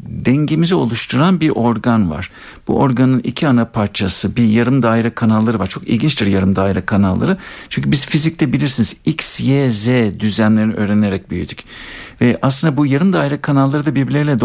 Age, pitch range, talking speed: 60-79, 110-155 Hz, 150 wpm